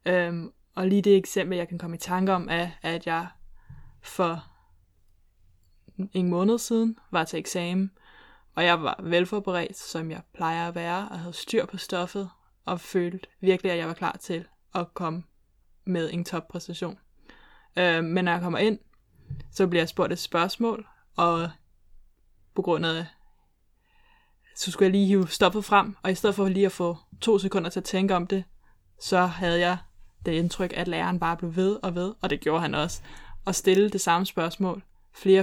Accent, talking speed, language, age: native, 185 wpm, Danish, 20-39